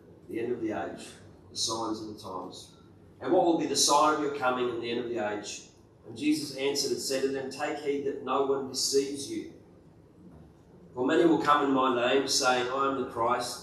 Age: 40-59